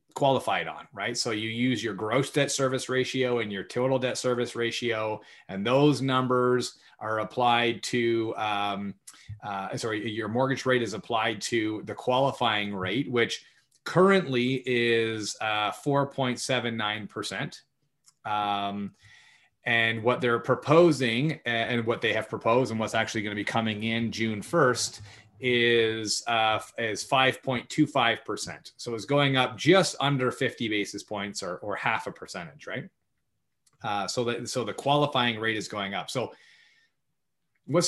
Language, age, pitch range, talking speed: English, 30-49, 110-130 Hz, 145 wpm